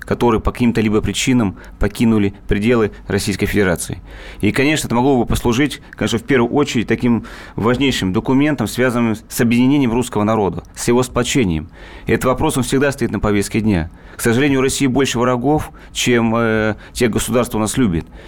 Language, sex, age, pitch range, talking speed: Russian, male, 30-49, 110-130 Hz, 170 wpm